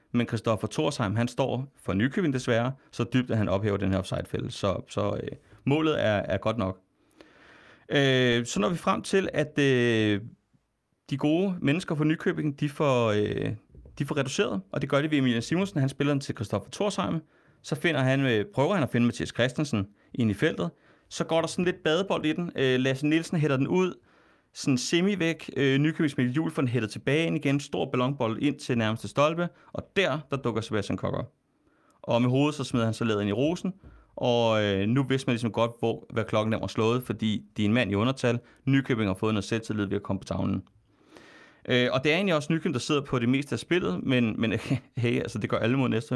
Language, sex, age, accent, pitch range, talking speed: Danish, male, 30-49, native, 115-150 Hz, 220 wpm